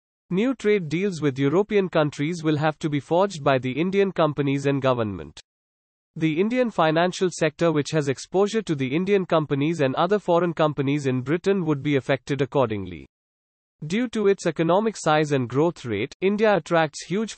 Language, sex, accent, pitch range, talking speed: English, male, Indian, 135-180 Hz, 170 wpm